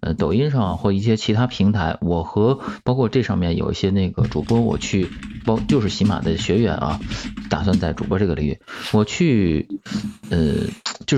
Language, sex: Chinese, male